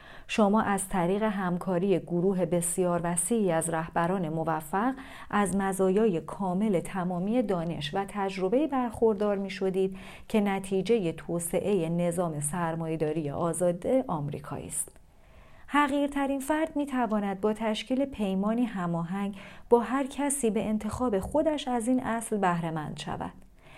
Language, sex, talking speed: Persian, female, 115 wpm